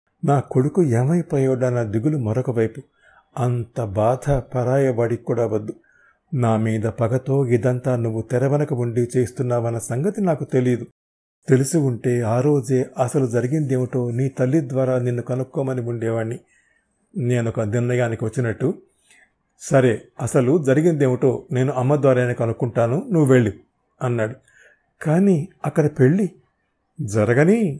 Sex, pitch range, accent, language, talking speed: male, 120-155 Hz, native, Telugu, 115 wpm